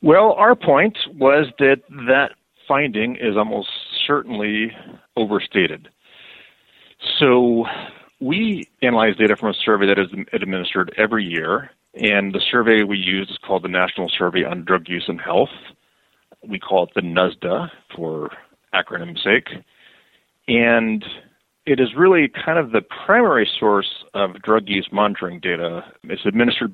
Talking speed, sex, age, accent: 140 wpm, male, 40-59, American